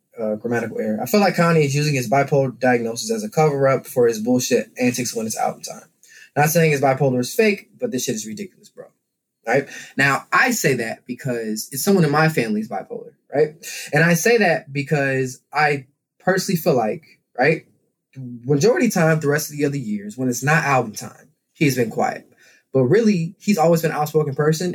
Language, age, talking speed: English, 20-39, 210 wpm